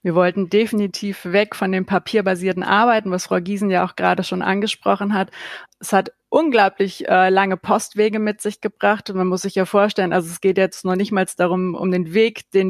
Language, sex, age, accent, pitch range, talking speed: German, female, 30-49, German, 185-210 Hz, 205 wpm